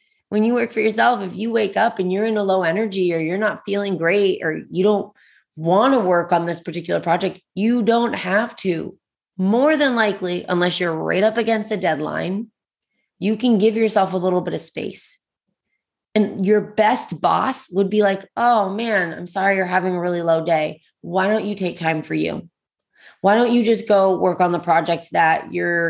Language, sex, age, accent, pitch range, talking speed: English, female, 20-39, American, 175-215 Hz, 205 wpm